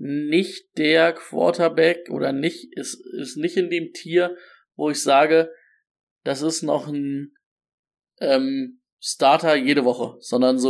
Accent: German